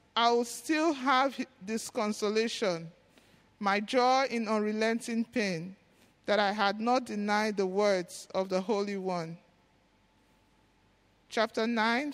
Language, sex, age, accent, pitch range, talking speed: English, male, 50-69, Nigerian, 205-270 Hz, 120 wpm